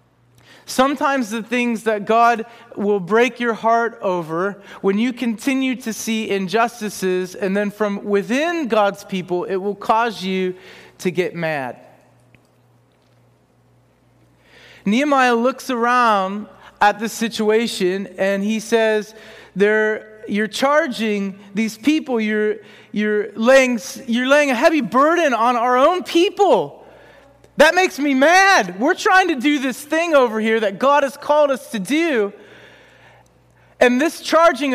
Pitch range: 205-285 Hz